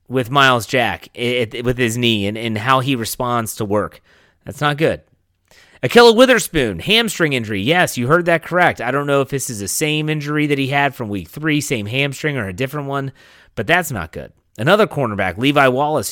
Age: 30-49